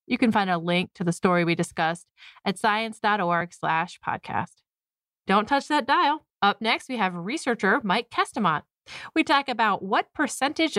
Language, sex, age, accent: English, female, 30-49, American